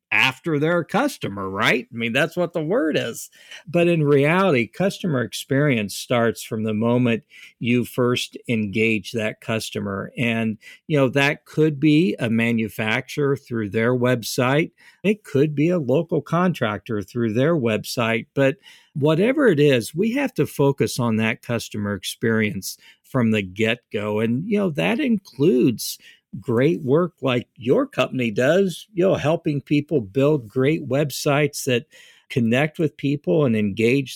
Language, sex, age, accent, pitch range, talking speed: English, male, 50-69, American, 115-155 Hz, 150 wpm